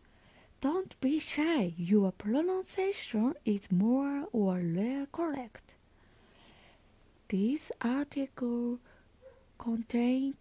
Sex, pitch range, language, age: female, 195-300 Hz, Japanese, 20-39